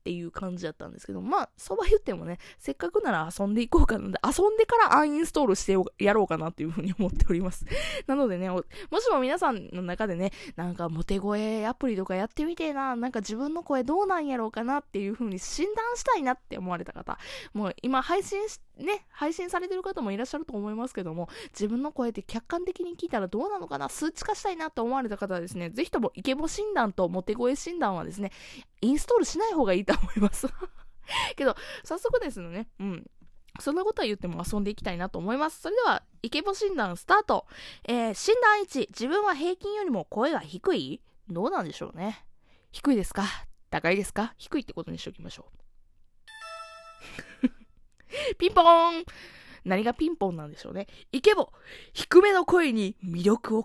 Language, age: Japanese, 20-39